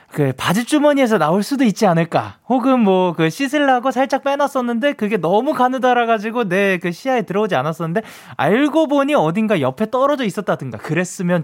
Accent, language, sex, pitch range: native, Korean, male, 175-255 Hz